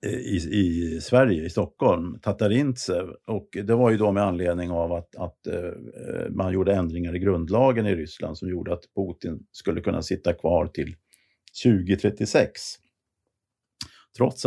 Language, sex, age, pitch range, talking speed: Swedish, male, 50-69, 90-120 Hz, 140 wpm